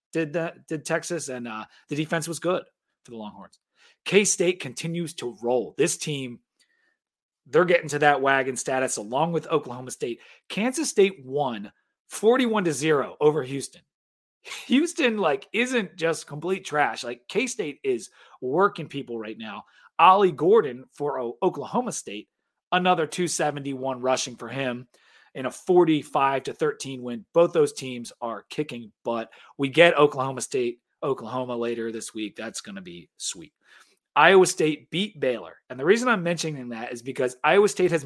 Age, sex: 30-49, male